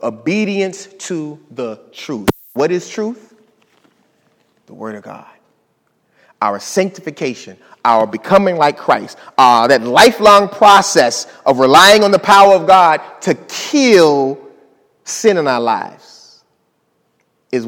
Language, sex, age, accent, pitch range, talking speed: English, male, 30-49, American, 145-220 Hz, 120 wpm